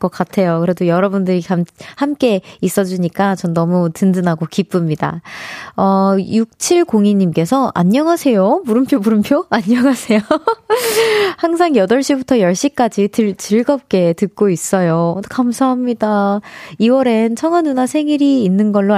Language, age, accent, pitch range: Korean, 20-39, native, 190-265 Hz